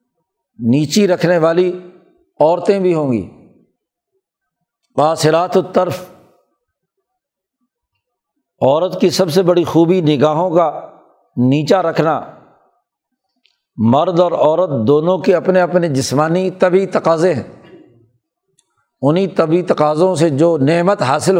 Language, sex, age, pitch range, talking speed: Urdu, male, 60-79, 155-195 Hz, 105 wpm